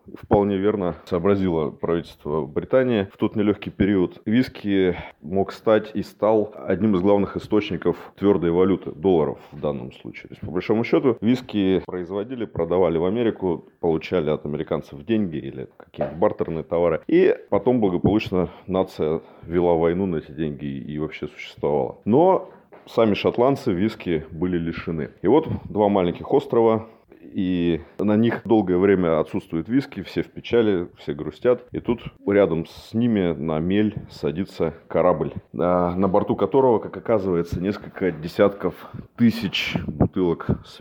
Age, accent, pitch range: 30-49, native, 85-105 Hz